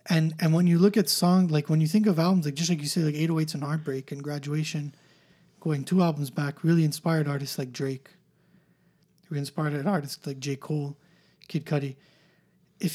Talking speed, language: 195 wpm, English